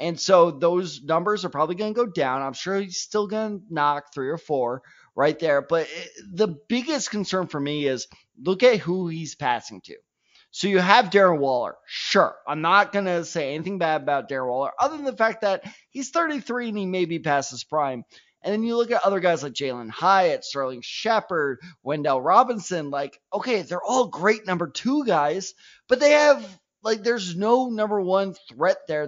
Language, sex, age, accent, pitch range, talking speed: English, male, 30-49, American, 150-215 Hz, 200 wpm